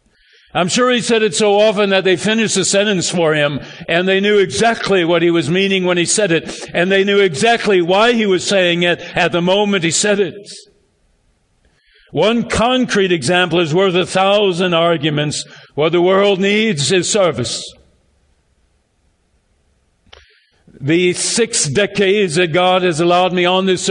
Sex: male